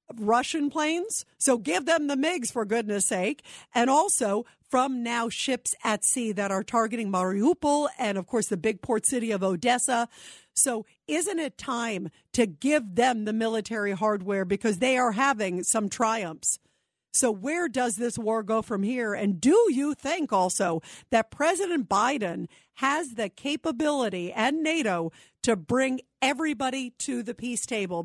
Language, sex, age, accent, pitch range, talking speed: English, female, 50-69, American, 195-260 Hz, 160 wpm